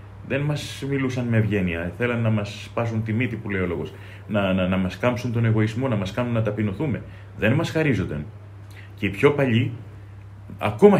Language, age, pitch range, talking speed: Greek, 30-49, 100-120 Hz, 190 wpm